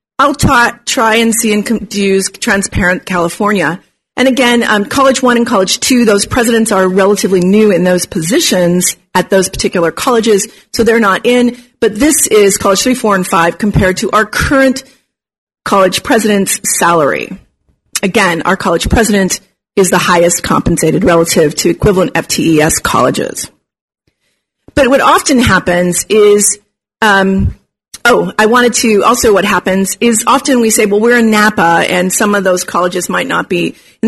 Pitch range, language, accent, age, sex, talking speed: 185-245 Hz, English, American, 40-59, female, 155 wpm